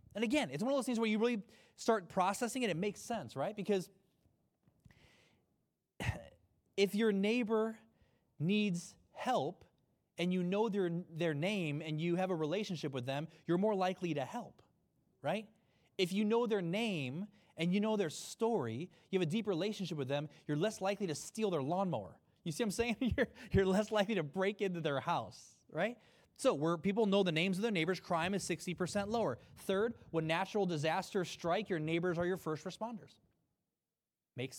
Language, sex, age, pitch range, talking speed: English, male, 20-39, 150-200 Hz, 185 wpm